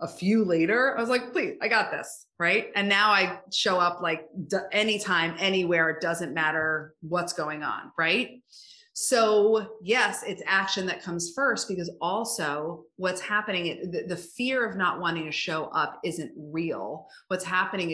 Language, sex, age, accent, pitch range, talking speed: English, female, 30-49, American, 165-220 Hz, 170 wpm